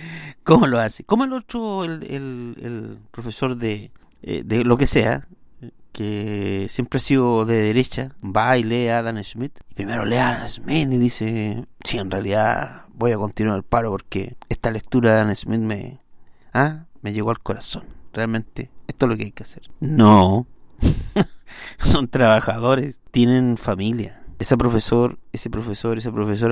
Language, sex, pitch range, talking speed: Spanish, male, 105-125 Hz, 170 wpm